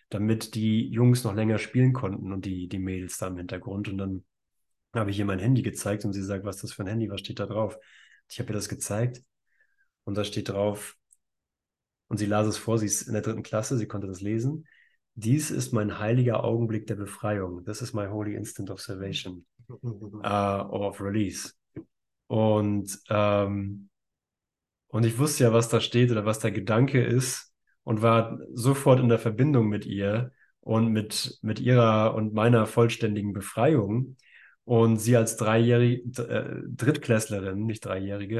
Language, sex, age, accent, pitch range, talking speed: German, male, 20-39, German, 100-120 Hz, 180 wpm